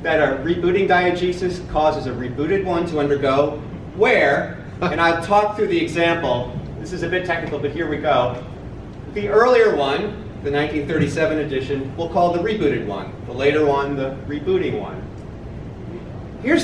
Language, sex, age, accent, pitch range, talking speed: English, male, 30-49, American, 150-200 Hz, 160 wpm